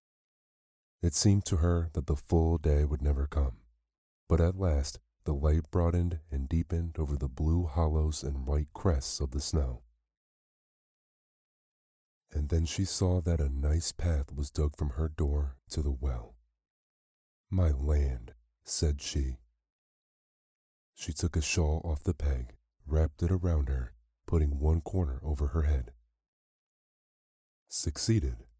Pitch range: 70-85 Hz